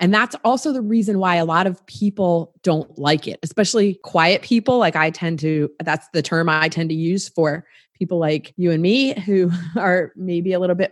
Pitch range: 170-215 Hz